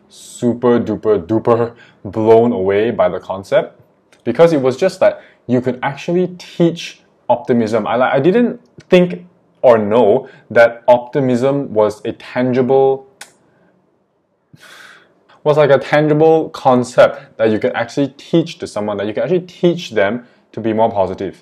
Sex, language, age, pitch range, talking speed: male, English, 20-39, 105-135 Hz, 145 wpm